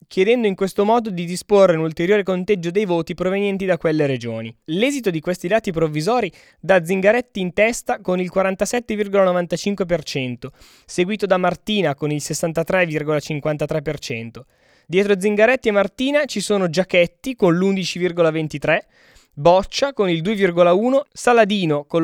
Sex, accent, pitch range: male, native, 150-205 Hz